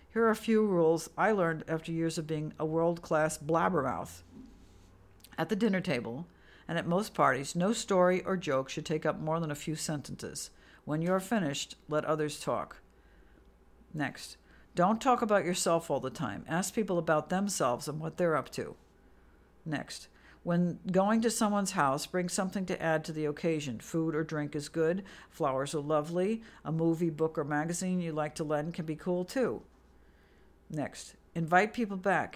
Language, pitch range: English, 145-185 Hz